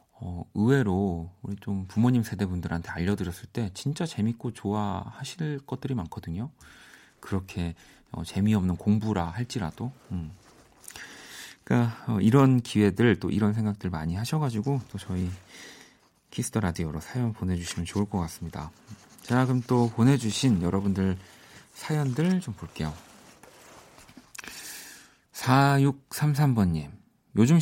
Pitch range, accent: 90-130 Hz, native